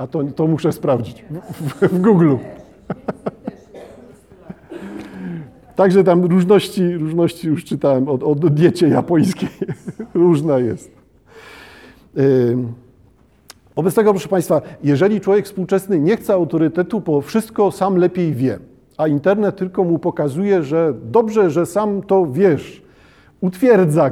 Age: 50-69